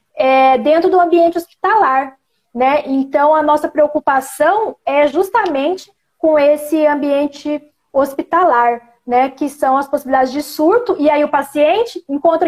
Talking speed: 135 wpm